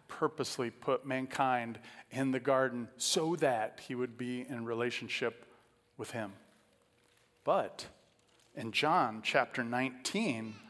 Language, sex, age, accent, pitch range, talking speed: English, male, 40-59, American, 125-170 Hz, 110 wpm